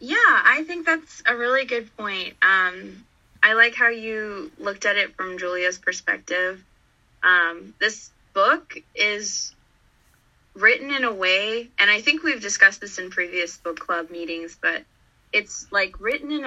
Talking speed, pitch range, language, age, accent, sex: 155 wpm, 180-225 Hz, English, 20-39, American, female